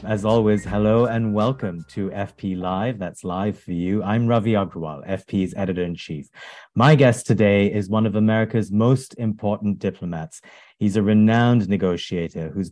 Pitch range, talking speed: 95-115 Hz, 150 wpm